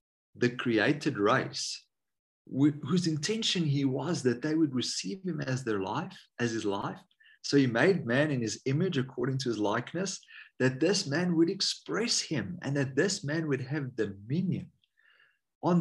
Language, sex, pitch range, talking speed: English, male, 120-165 Hz, 165 wpm